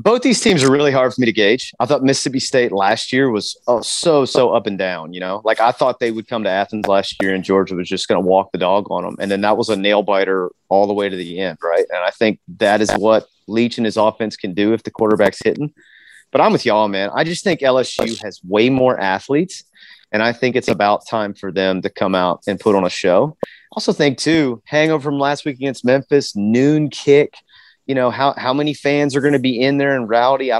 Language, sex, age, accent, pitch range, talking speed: English, male, 30-49, American, 105-145 Hz, 255 wpm